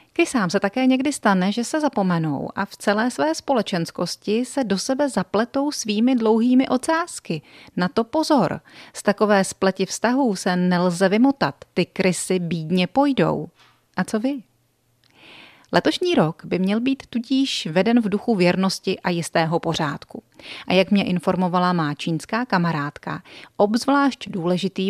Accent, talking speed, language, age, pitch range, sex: native, 140 wpm, Czech, 30-49, 170-220 Hz, female